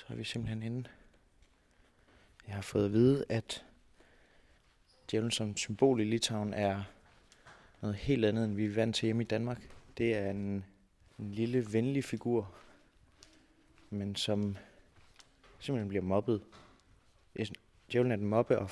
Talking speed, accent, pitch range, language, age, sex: 140 wpm, native, 105-120 Hz, Danish, 20-39, male